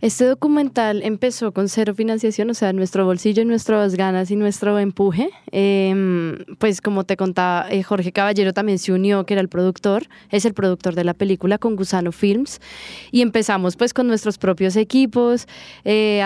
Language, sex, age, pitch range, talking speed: English, female, 20-39, 195-230 Hz, 175 wpm